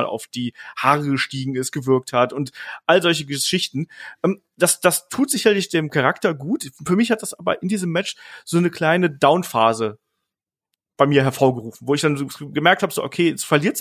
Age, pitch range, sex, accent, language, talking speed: 30-49, 140-185 Hz, male, German, German, 185 wpm